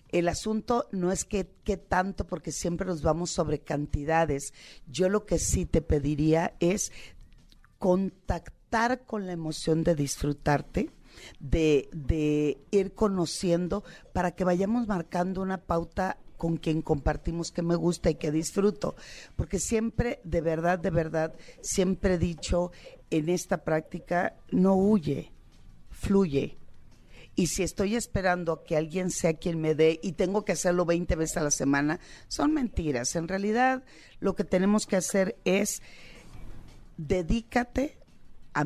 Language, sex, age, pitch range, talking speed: Spanish, female, 40-59, 160-190 Hz, 140 wpm